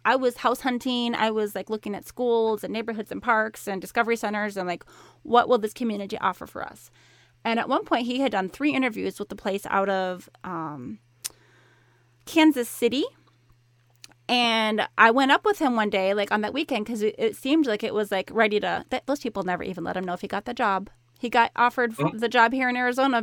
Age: 30-49